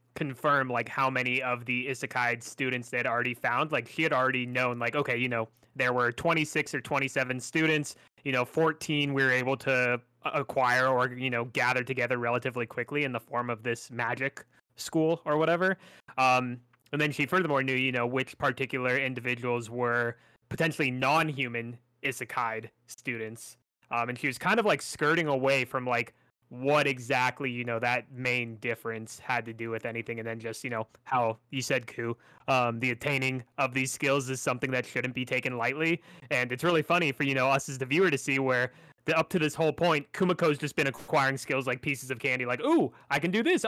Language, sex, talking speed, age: English, male, 200 wpm, 20-39